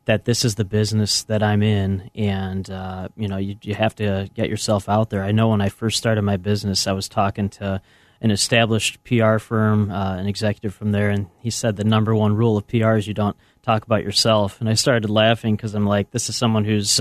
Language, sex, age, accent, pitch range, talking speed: English, male, 30-49, American, 100-115 Hz, 235 wpm